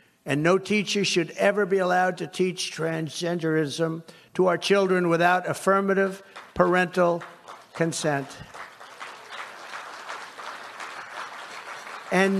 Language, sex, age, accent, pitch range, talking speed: English, male, 60-79, American, 160-190 Hz, 85 wpm